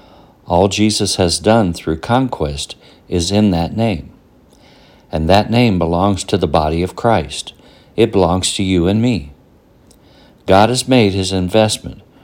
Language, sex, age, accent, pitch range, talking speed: English, male, 60-79, American, 85-110 Hz, 145 wpm